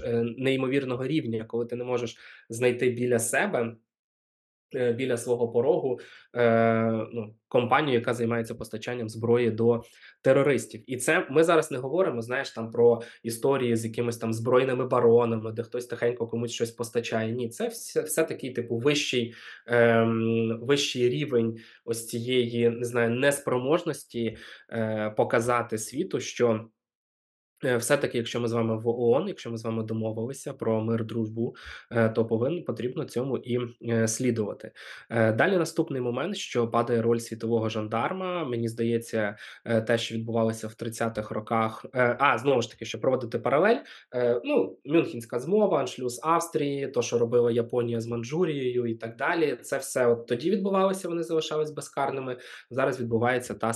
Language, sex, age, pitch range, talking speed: Ukrainian, male, 20-39, 115-125 Hz, 140 wpm